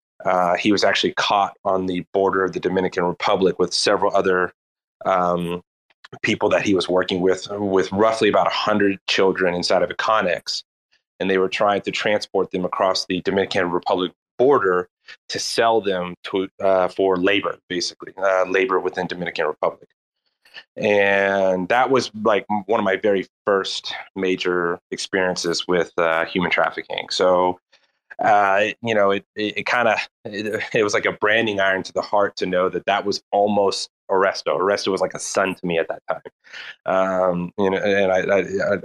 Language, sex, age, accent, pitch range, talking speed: English, male, 30-49, American, 90-100 Hz, 170 wpm